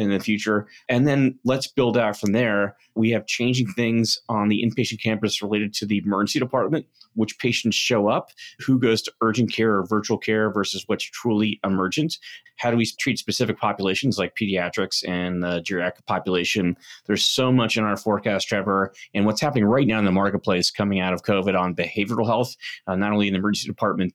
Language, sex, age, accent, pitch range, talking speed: English, male, 30-49, American, 95-110 Hz, 200 wpm